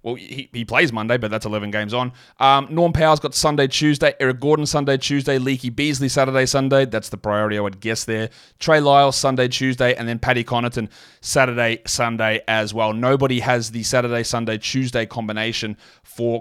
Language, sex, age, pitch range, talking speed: English, male, 30-49, 115-135 Hz, 185 wpm